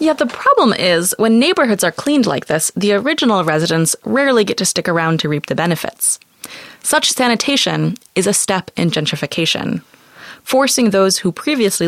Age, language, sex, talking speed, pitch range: 20-39, English, female, 165 wpm, 165-210 Hz